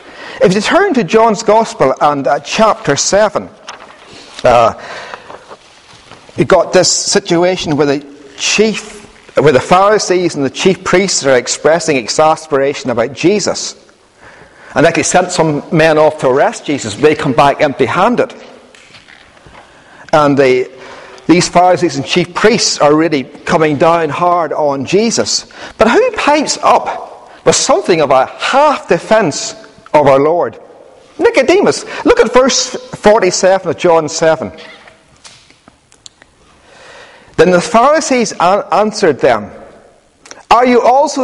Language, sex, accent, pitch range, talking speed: English, male, British, 160-255 Hz, 125 wpm